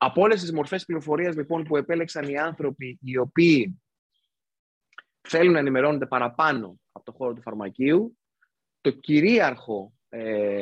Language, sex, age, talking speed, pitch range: Greek, male, 20-39, 135 wpm, 120-155 Hz